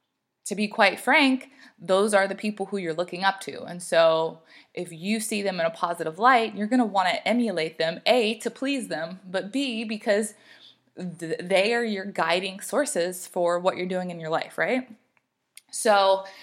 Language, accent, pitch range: English, American, 180-220 Hz